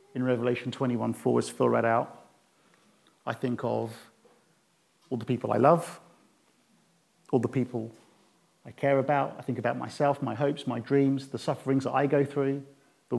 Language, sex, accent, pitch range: English, male, British, 125-150 Hz